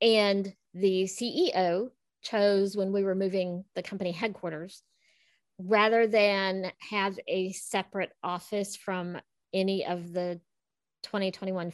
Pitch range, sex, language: 185-260 Hz, female, English